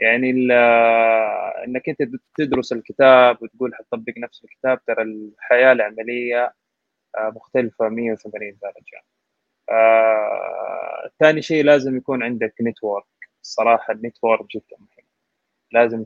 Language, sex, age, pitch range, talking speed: Arabic, male, 20-39, 115-150 Hz, 95 wpm